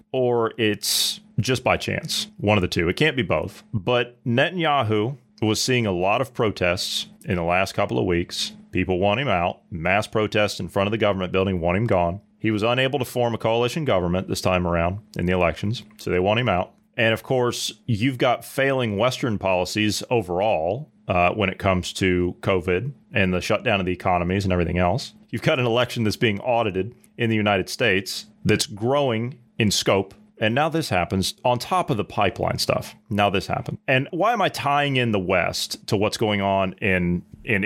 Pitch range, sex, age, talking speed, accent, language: 95-125 Hz, male, 30-49, 200 wpm, American, English